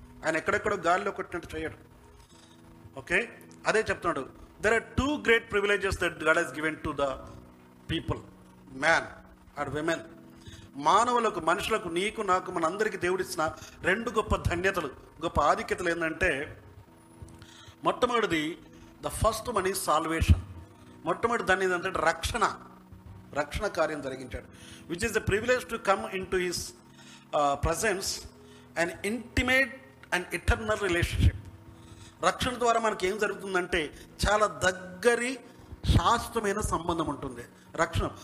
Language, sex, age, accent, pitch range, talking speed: Telugu, male, 50-69, native, 140-200 Hz, 120 wpm